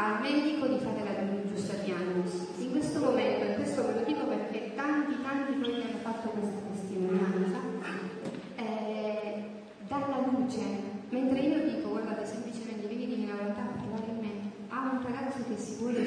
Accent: native